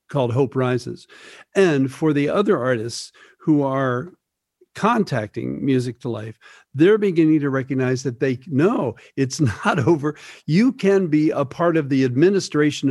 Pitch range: 125-165 Hz